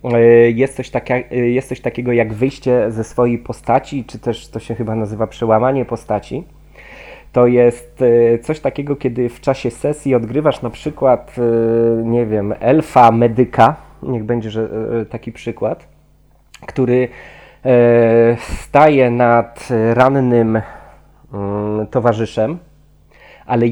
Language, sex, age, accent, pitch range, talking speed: Polish, male, 20-39, native, 110-130 Hz, 105 wpm